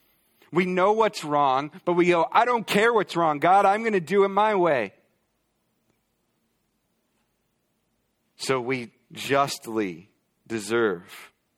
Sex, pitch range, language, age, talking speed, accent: male, 120-170 Hz, English, 40-59, 125 wpm, American